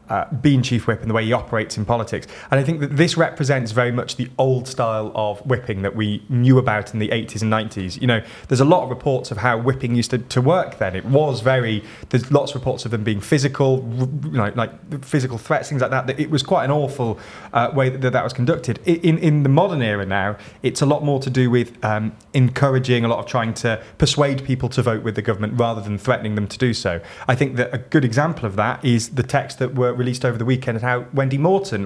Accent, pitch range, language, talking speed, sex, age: British, 110-135 Hz, English, 250 wpm, male, 20-39